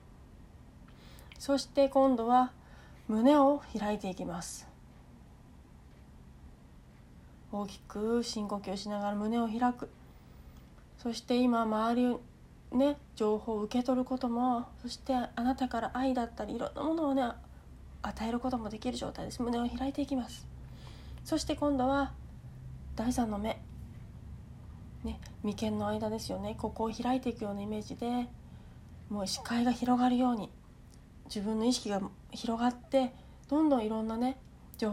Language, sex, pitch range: Japanese, female, 200-255 Hz